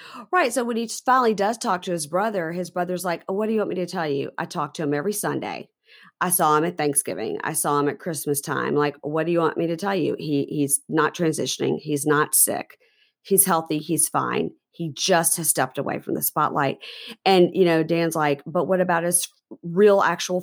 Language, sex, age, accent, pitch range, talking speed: English, female, 40-59, American, 155-205 Hz, 230 wpm